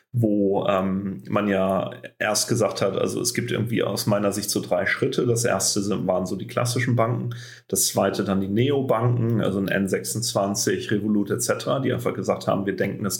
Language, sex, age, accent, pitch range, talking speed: German, male, 40-59, German, 100-120 Hz, 190 wpm